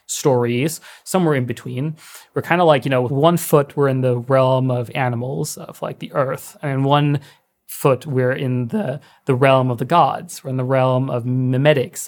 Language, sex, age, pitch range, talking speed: English, male, 30-49, 130-155 Hz, 200 wpm